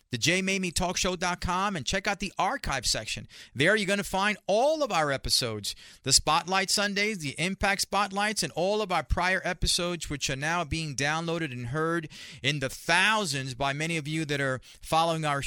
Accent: American